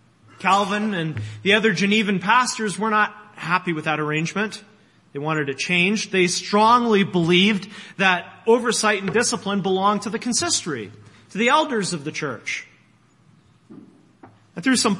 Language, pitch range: English, 165-215 Hz